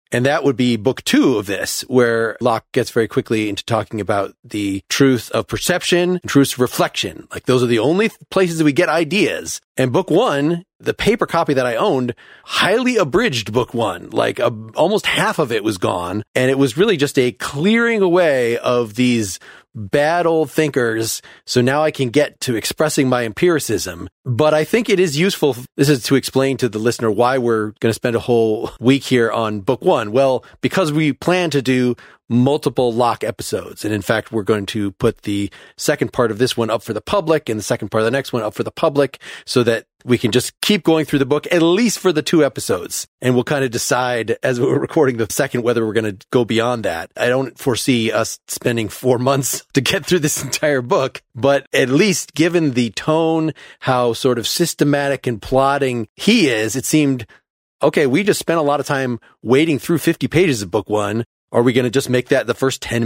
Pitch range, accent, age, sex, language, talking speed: 115-150 Hz, American, 30-49, male, English, 215 wpm